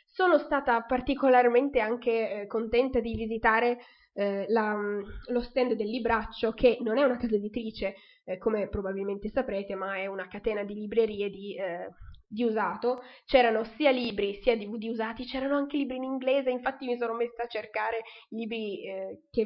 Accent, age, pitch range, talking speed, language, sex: native, 20-39, 210-250 Hz, 160 wpm, Italian, female